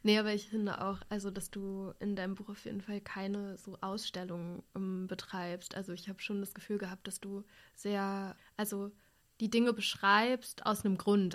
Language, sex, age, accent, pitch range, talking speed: German, female, 20-39, German, 195-215 Hz, 185 wpm